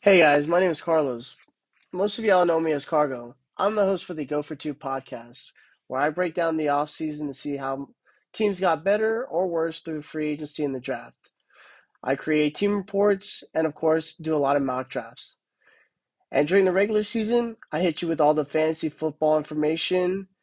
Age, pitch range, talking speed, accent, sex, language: 20-39, 135-160 Hz, 205 wpm, American, male, English